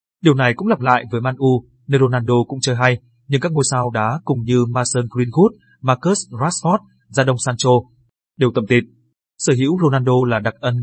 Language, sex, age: Vietnamese, male, 20-39